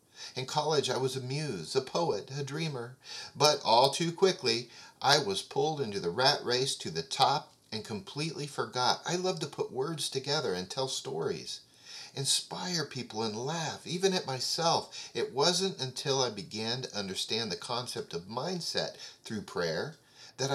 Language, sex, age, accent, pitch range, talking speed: English, male, 40-59, American, 125-185 Hz, 165 wpm